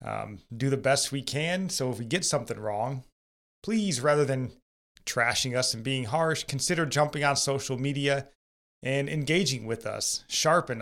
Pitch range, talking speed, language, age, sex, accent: 115-145 Hz, 165 wpm, English, 30-49, male, American